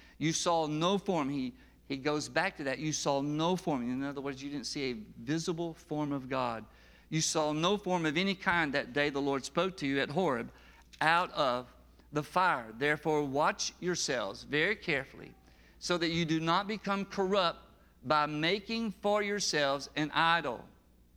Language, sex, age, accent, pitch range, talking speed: English, male, 50-69, American, 145-190 Hz, 180 wpm